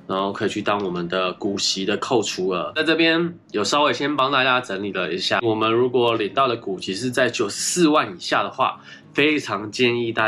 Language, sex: Chinese, male